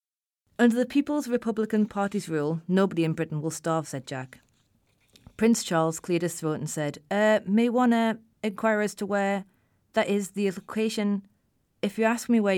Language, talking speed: English, 175 wpm